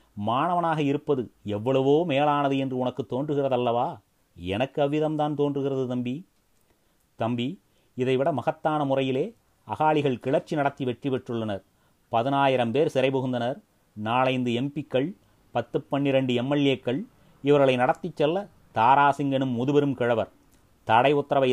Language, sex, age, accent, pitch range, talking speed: Tamil, male, 30-49, native, 120-140 Hz, 105 wpm